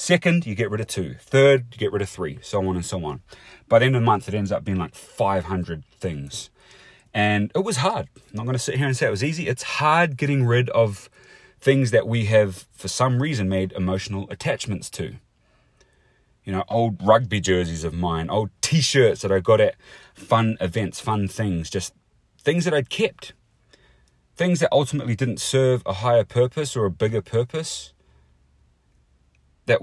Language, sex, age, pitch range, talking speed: English, male, 30-49, 95-135 Hz, 195 wpm